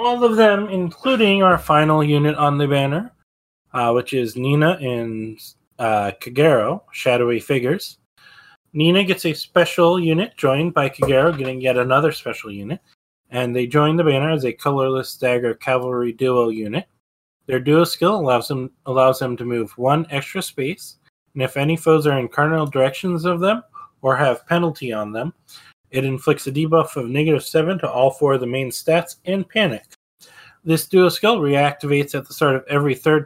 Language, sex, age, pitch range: English, male, 20-39, 125-160 Hz